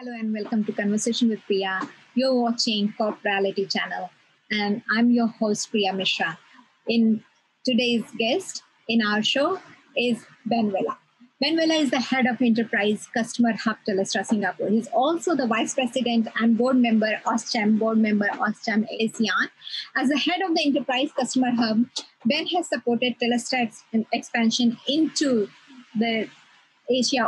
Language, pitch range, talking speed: English, 225-265 Hz, 145 wpm